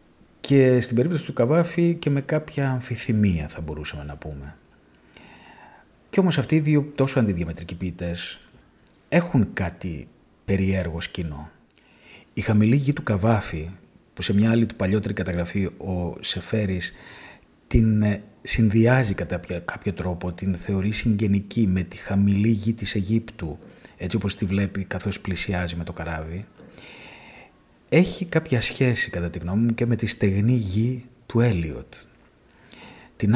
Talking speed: 140 wpm